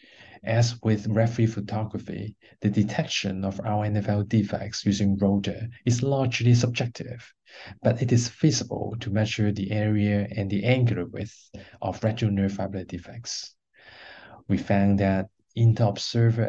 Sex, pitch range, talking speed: male, 100-115 Hz, 125 wpm